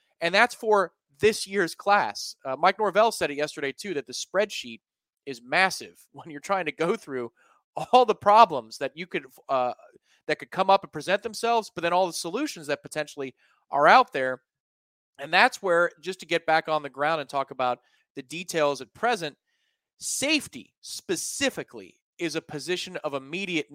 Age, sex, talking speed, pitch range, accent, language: 30-49, male, 180 wpm, 140-195 Hz, American, English